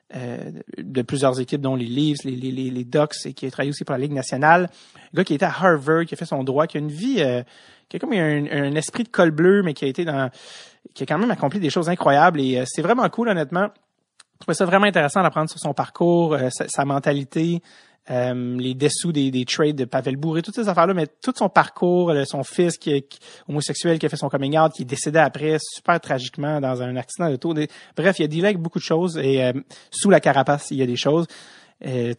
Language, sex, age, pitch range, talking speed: English, male, 30-49, 135-175 Hz, 250 wpm